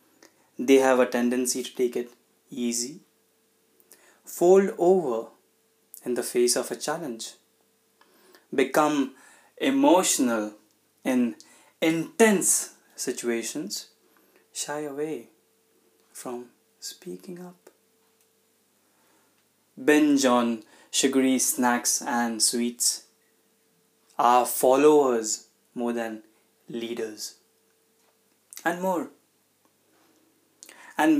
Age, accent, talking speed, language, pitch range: 20-39, native, 75 wpm, Hindi, 120-165 Hz